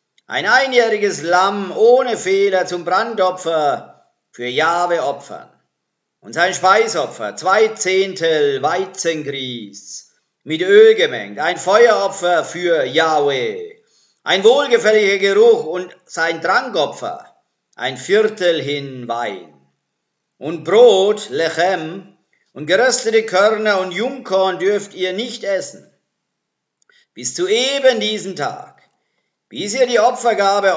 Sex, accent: male, German